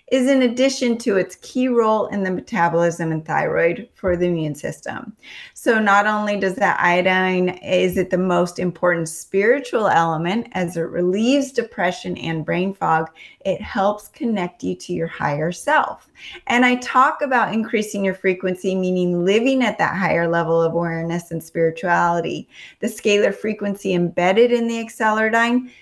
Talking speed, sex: 160 wpm, female